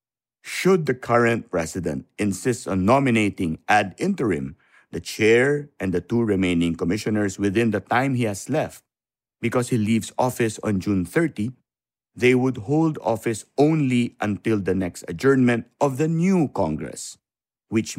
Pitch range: 105-145 Hz